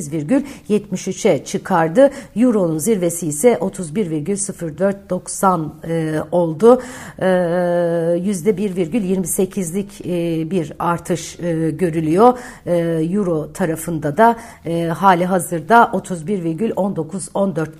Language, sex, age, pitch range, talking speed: Turkish, female, 60-79, 175-225 Hz, 90 wpm